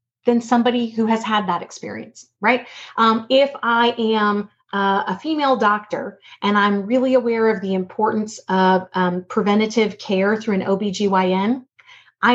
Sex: female